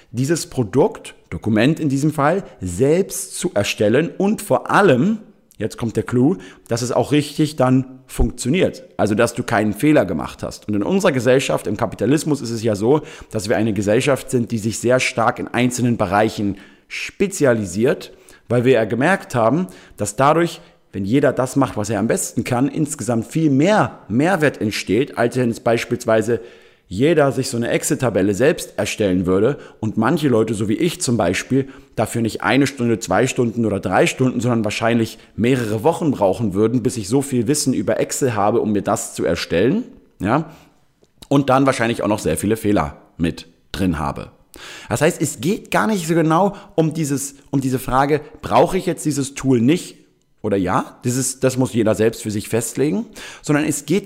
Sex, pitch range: male, 110-145 Hz